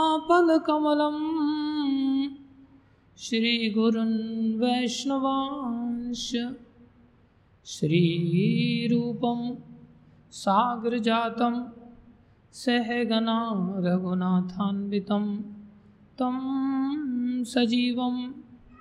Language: Hindi